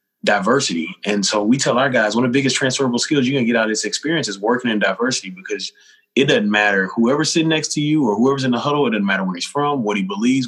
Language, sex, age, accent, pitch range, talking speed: English, male, 20-39, American, 110-140 Hz, 270 wpm